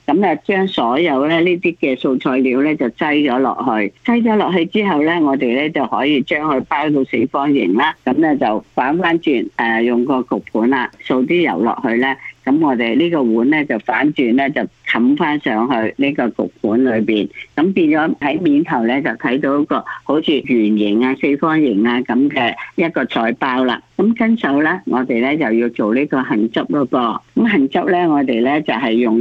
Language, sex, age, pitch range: Chinese, female, 50-69, 125-185 Hz